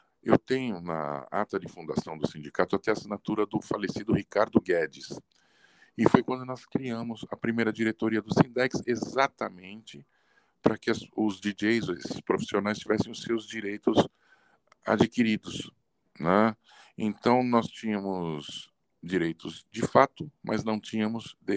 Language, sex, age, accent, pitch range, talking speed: Portuguese, male, 50-69, Brazilian, 90-115 Hz, 130 wpm